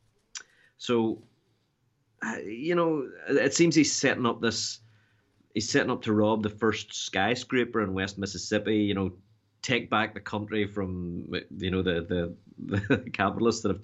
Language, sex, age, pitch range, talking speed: English, male, 30-49, 95-110 Hz, 150 wpm